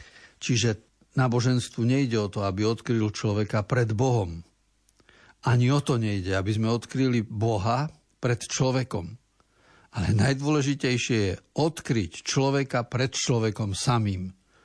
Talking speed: 115 wpm